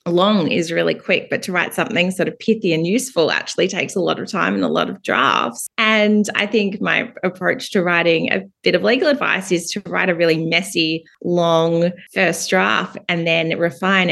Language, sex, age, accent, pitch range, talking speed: English, female, 20-39, Australian, 155-205 Hz, 205 wpm